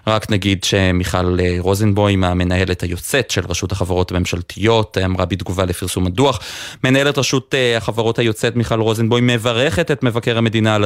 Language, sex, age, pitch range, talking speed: Hebrew, male, 30-49, 100-125 Hz, 140 wpm